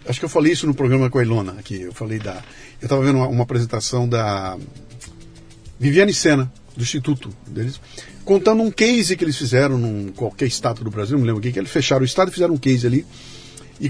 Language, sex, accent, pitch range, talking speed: Portuguese, male, Brazilian, 125-195 Hz, 215 wpm